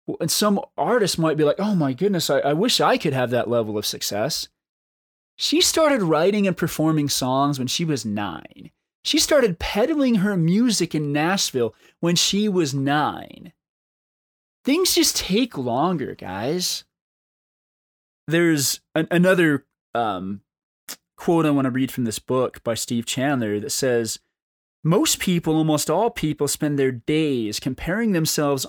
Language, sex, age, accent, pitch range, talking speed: English, male, 20-39, American, 135-210 Hz, 150 wpm